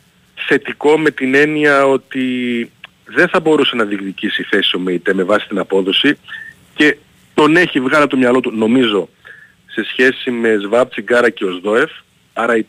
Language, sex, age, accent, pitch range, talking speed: Greek, male, 40-59, native, 105-140 Hz, 165 wpm